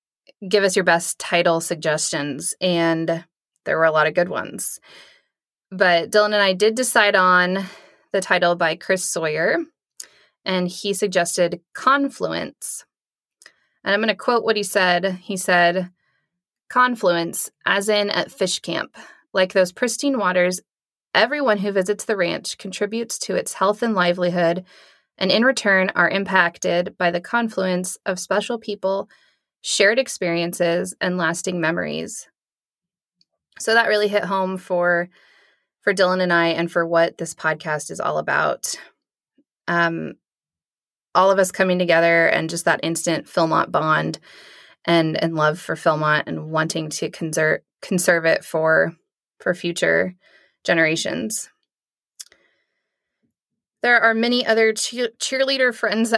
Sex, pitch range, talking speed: female, 170-210 Hz, 140 wpm